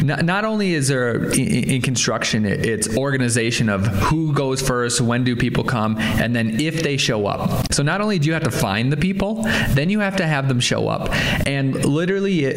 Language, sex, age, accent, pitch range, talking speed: English, male, 20-39, American, 115-155 Hz, 200 wpm